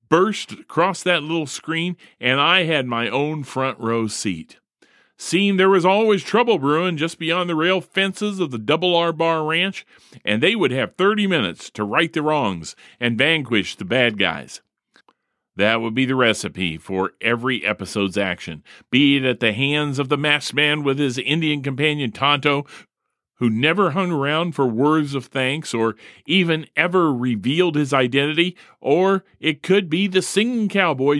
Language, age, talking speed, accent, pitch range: English, 40-59, 170 wpm, American, 125-175 Hz